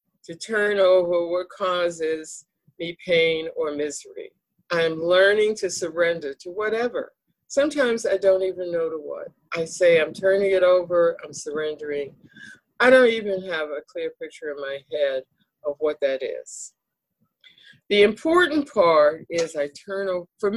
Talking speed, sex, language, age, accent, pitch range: 150 wpm, female, English, 50-69, American, 170-235 Hz